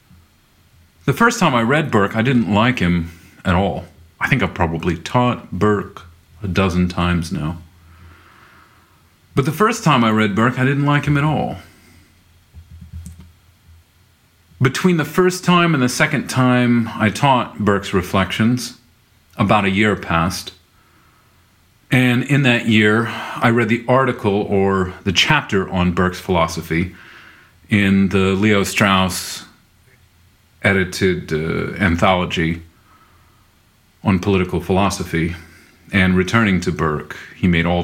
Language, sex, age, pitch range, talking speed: English, male, 40-59, 85-115 Hz, 130 wpm